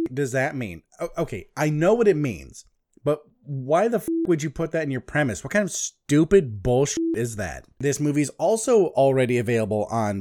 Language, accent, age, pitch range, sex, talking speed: English, American, 30-49, 125-160 Hz, male, 205 wpm